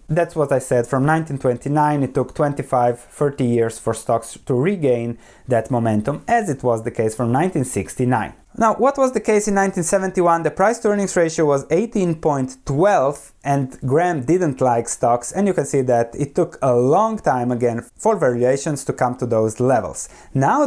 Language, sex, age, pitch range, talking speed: English, male, 20-39, 125-180 Hz, 170 wpm